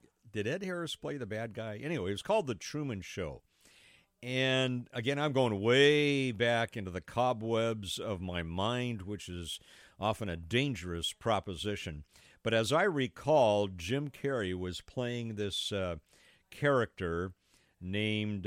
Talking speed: 145 wpm